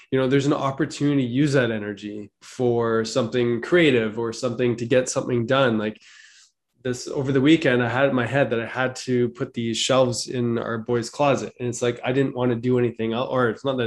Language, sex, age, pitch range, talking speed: English, male, 20-39, 110-125 Hz, 225 wpm